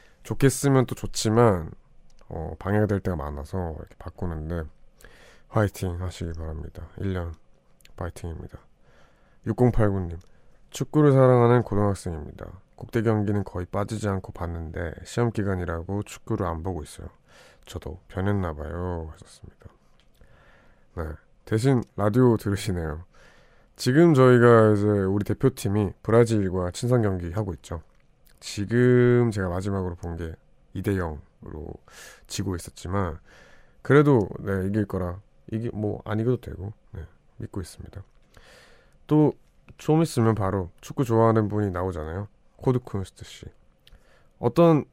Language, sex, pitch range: Korean, male, 90-120 Hz